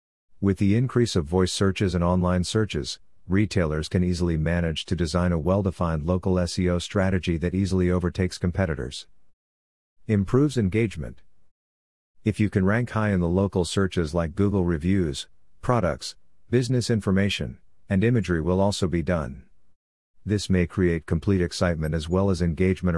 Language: English